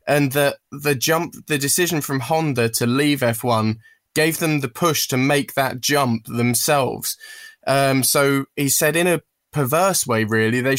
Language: English